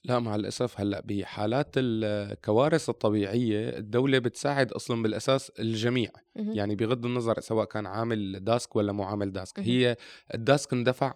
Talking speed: 140 wpm